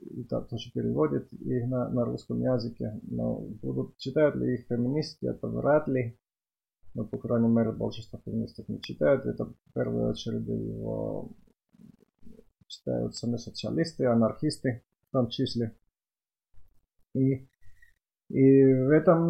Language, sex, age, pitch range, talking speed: Finnish, male, 30-49, 115-135 Hz, 125 wpm